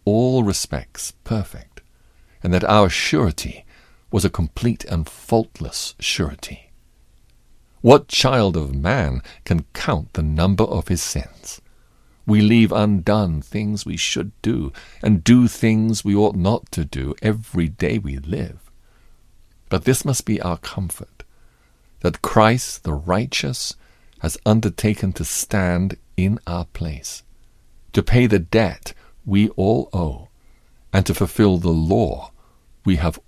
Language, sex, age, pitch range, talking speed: English, male, 50-69, 80-110 Hz, 135 wpm